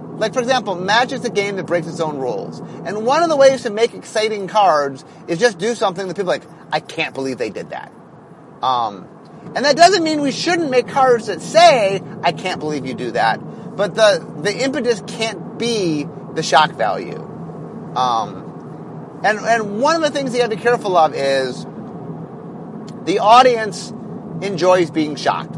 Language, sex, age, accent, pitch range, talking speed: English, male, 30-49, American, 170-245 Hz, 185 wpm